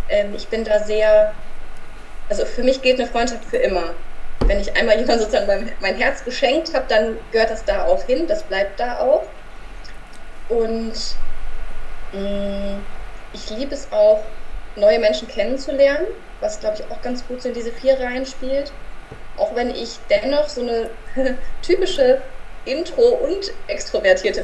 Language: German